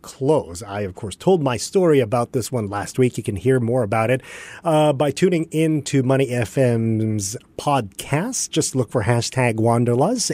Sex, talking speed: male, 175 wpm